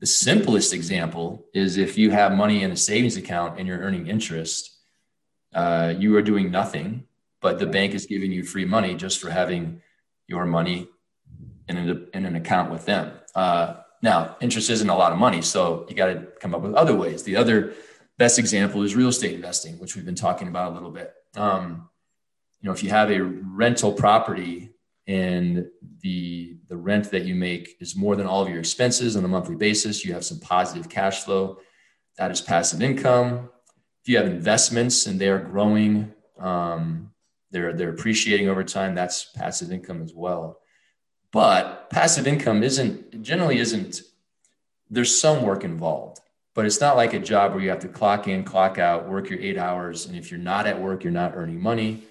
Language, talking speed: English, 195 wpm